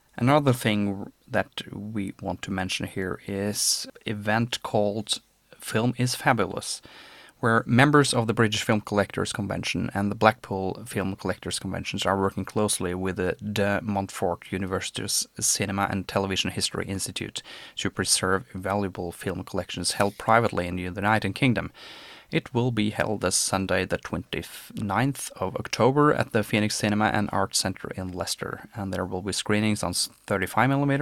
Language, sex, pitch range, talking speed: English, male, 95-115 Hz, 150 wpm